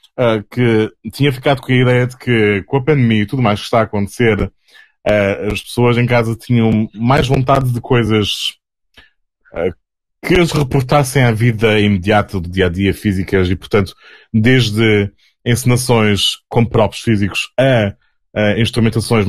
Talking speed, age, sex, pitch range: 145 wpm, 20-39, male, 105-125 Hz